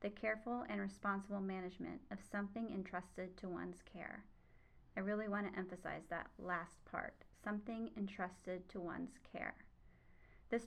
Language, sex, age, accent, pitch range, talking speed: English, female, 30-49, American, 185-215 Hz, 135 wpm